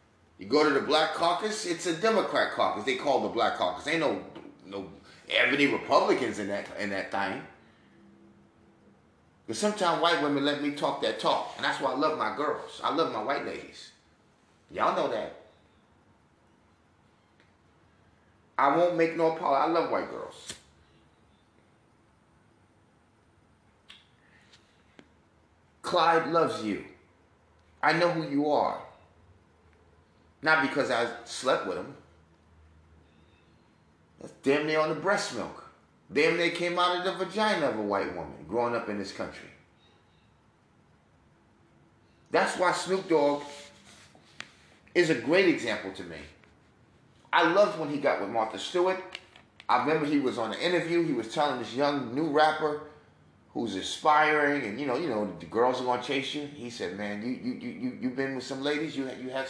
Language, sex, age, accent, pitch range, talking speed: English, male, 30-49, American, 100-165 Hz, 155 wpm